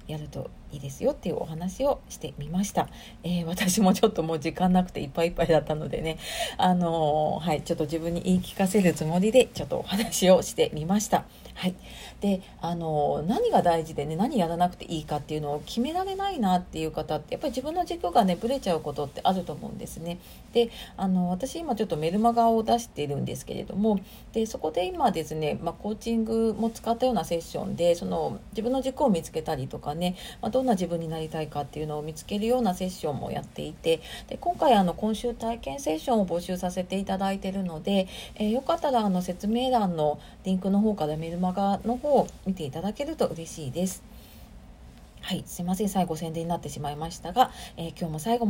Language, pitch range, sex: Japanese, 165-225 Hz, female